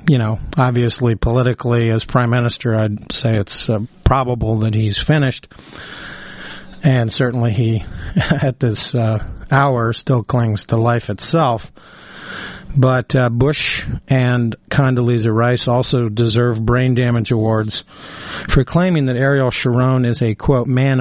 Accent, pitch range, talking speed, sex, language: American, 115-135 Hz, 135 wpm, male, English